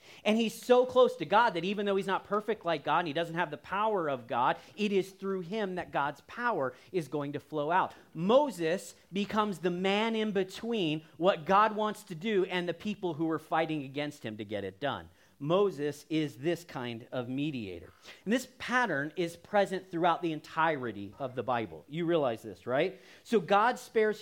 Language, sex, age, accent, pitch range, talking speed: English, male, 40-59, American, 160-215 Hz, 200 wpm